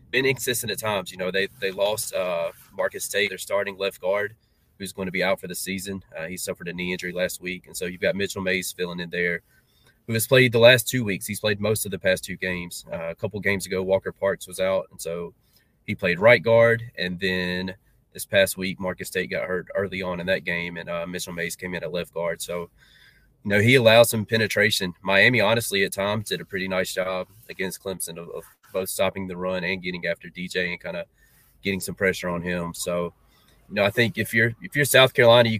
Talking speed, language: 240 wpm, English